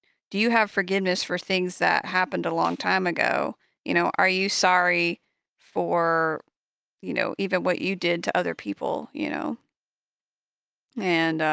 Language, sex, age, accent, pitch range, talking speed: English, female, 30-49, American, 165-200 Hz, 155 wpm